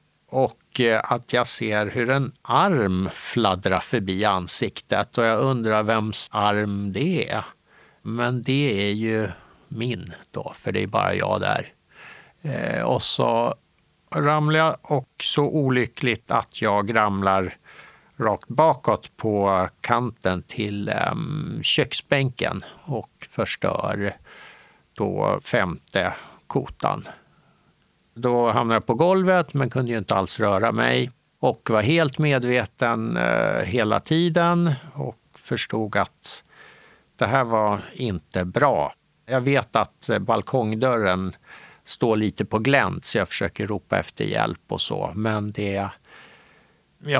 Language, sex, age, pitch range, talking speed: Swedish, male, 60-79, 105-135 Hz, 120 wpm